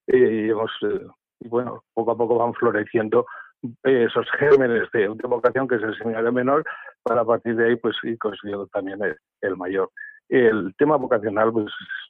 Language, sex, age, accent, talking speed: Spanish, male, 60-79, Spanish, 175 wpm